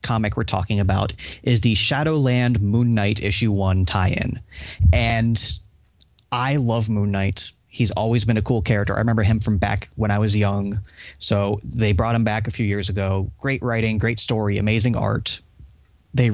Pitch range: 100-125 Hz